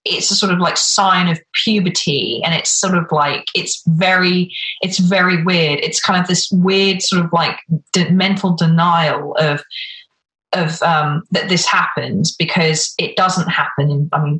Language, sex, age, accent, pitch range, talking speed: English, female, 20-39, British, 155-185 Hz, 165 wpm